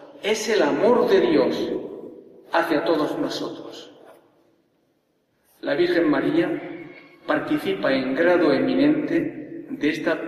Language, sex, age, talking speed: Spanish, male, 50-69, 100 wpm